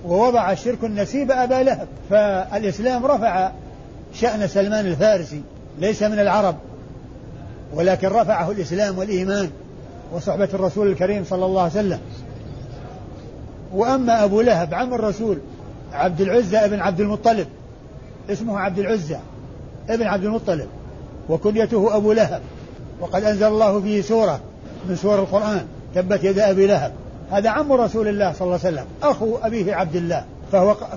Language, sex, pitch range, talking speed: Arabic, male, 180-215 Hz, 130 wpm